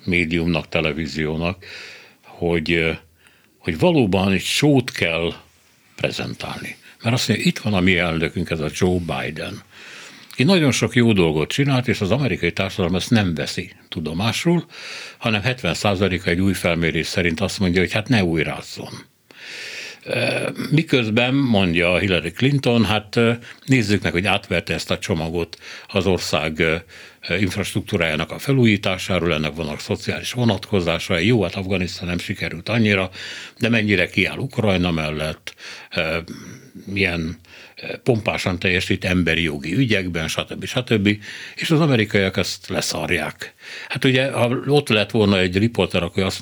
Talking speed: 135 wpm